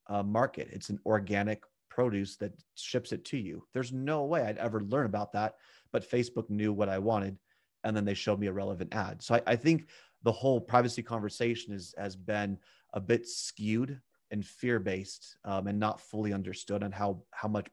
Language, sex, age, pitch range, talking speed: English, male, 30-49, 100-115 Hz, 195 wpm